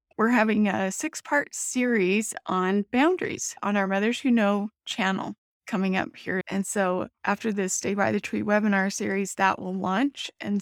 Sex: female